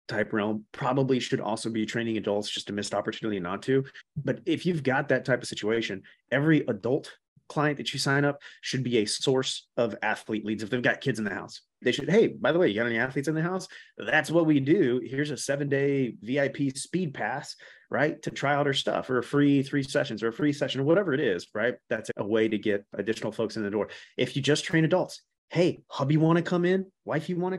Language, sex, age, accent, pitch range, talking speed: English, male, 30-49, American, 110-145 Hz, 245 wpm